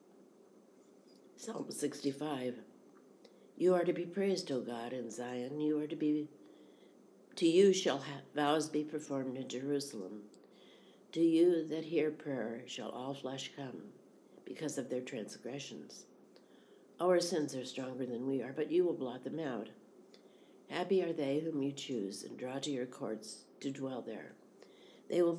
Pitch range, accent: 125-150 Hz, American